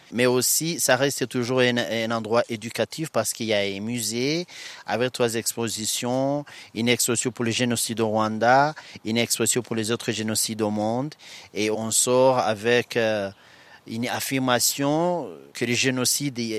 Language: French